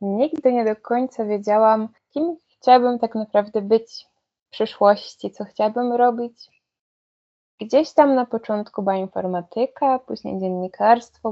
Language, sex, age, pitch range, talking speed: Polish, female, 20-39, 200-225 Hz, 120 wpm